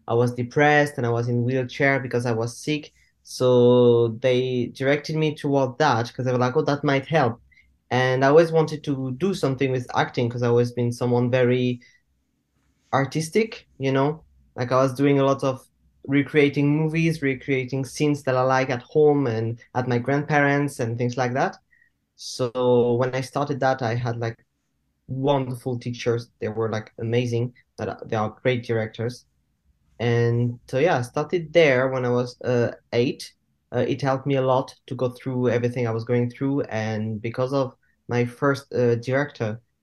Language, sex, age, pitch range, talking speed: English, male, 20-39, 120-140 Hz, 180 wpm